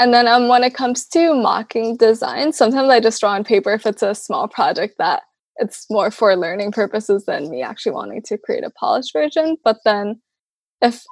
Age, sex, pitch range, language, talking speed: 10-29, female, 210-255 Hz, English, 205 wpm